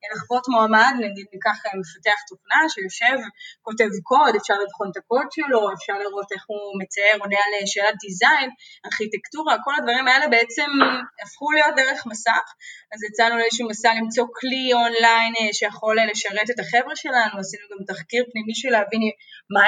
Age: 20-39